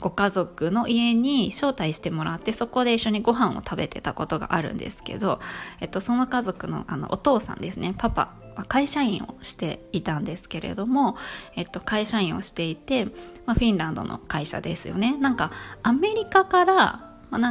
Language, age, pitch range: Japanese, 20-39, 195-270 Hz